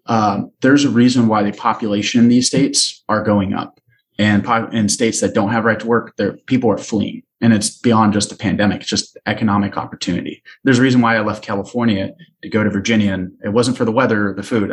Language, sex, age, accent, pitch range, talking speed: English, male, 30-49, American, 100-120 Hz, 230 wpm